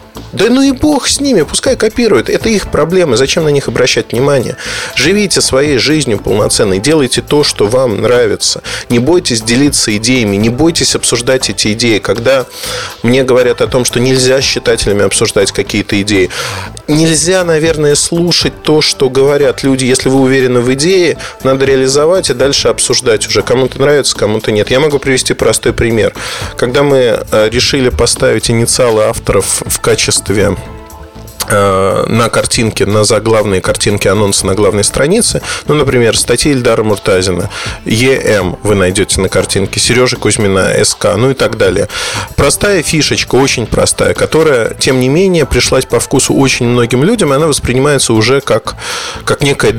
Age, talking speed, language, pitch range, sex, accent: 20-39, 155 wpm, Russian, 110-155 Hz, male, native